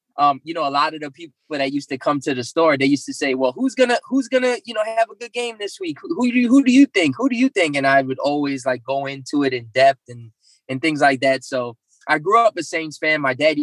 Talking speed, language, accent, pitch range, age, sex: 300 wpm, English, American, 140-190 Hz, 20-39, male